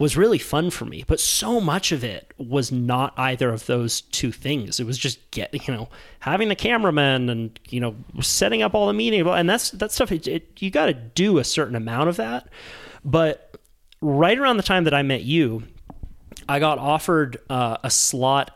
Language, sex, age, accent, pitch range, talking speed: English, male, 30-49, American, 120-145 Hz, 200 wpm